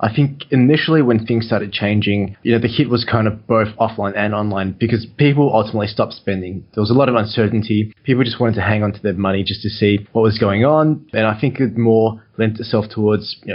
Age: 20-39